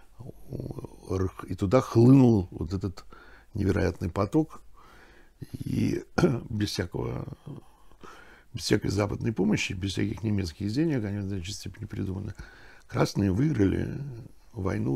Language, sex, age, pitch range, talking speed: Russian, male, 60-79, 85-110 Hz, 100 wpm